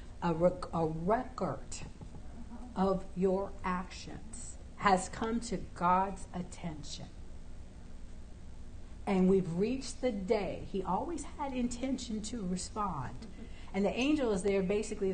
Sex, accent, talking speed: female, American, 105 wpm